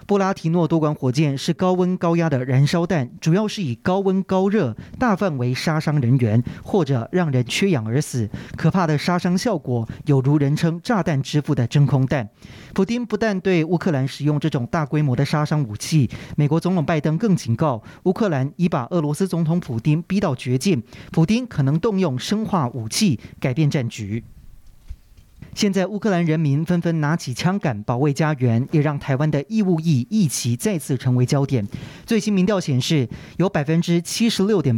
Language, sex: Chinese, male